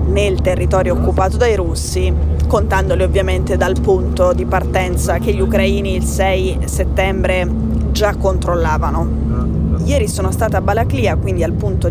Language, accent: Italian, native